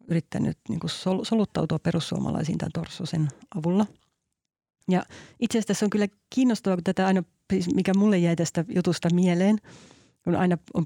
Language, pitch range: Finnish, 165-190 Hz